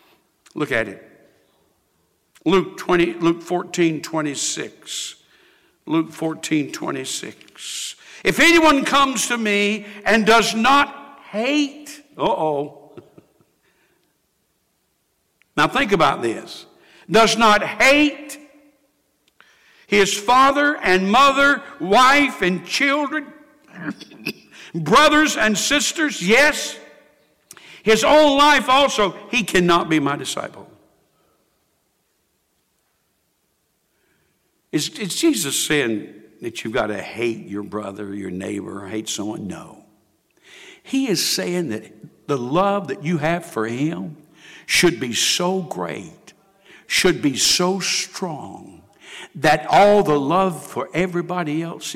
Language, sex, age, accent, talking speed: English, male, 60-79, American, 100 wpm